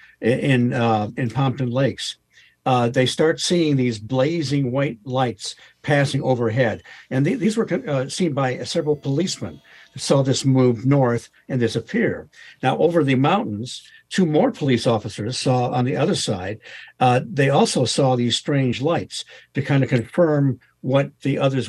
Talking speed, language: 155 wpm, English